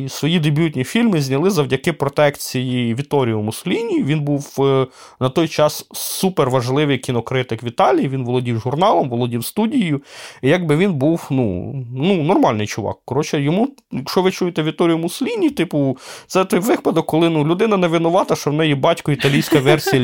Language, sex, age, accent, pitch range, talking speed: Ukrainian, male, 20-39, native, 130-175 Hz, 155 wpm